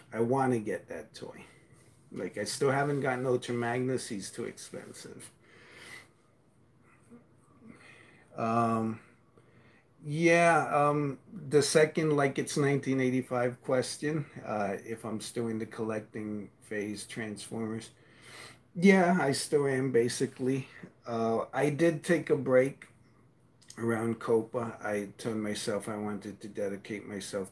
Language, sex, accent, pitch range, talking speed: English, male, American, 110-135 Hz, 120 wpm